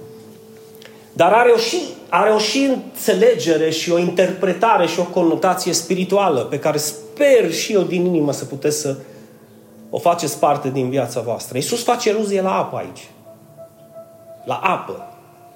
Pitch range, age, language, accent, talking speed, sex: 155-205 Hz, 30-49, Romanian, native, 150 wpm, male